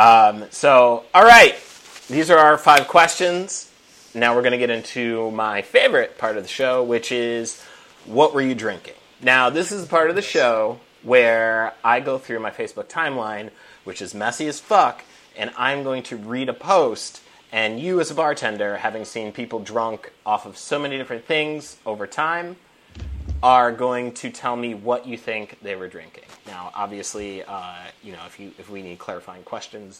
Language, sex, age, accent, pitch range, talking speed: English, male, 30-49, American, 110-150 Hz, 185 wpm